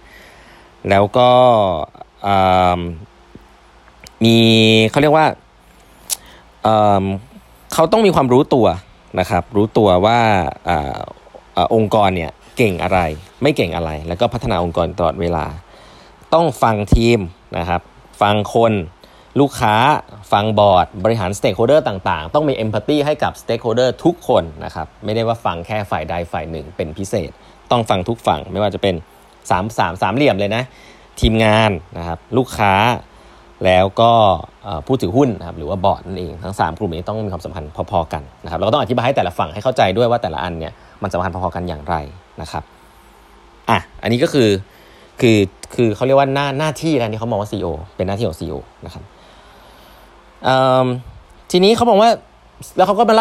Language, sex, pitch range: Thai, male, 90-120 Hz